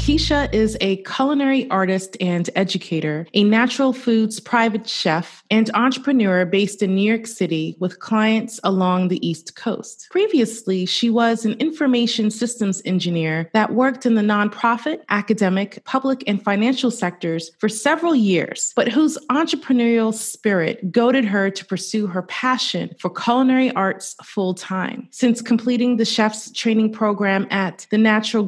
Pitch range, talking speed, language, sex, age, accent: 185-245 Hz, 145 wpm, English, female, 30-49, American